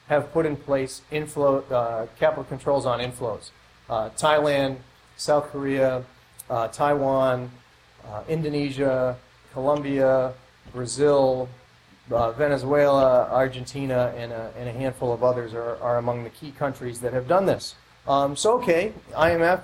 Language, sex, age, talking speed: English, male, 30-49, 135 wpm